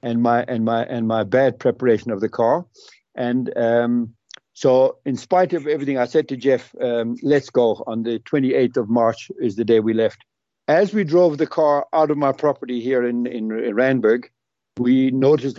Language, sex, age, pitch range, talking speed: English, male, 60-79, 120-150 Hz, 195 wpm